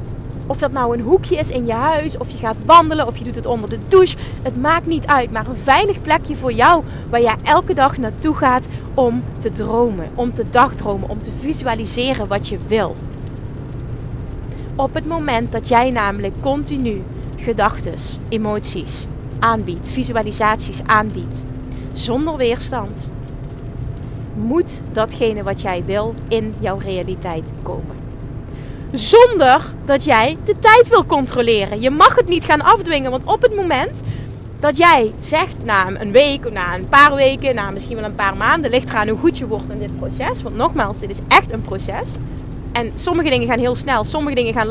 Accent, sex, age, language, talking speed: Dutch, female, 30-49, Dutch, 175 wpm